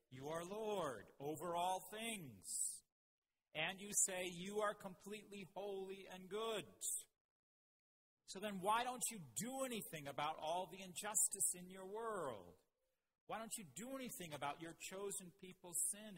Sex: male